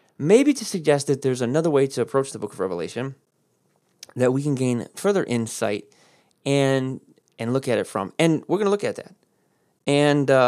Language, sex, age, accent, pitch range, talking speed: English, male, 30-49, American, 135-180 Hz, 195 wpm